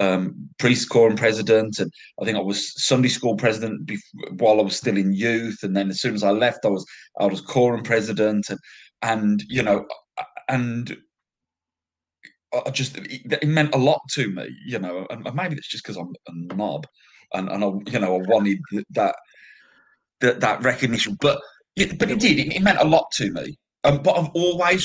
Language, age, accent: English, 30-49, British